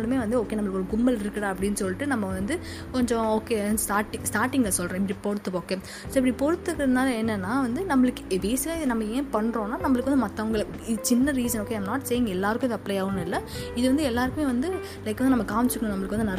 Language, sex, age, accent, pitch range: Tamil, female, 20-39, native, 210-260 Hz